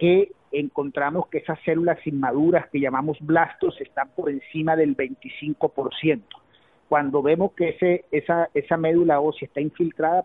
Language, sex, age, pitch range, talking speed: Spanish, male, 50-69, 140-165 Hz, 135 wpm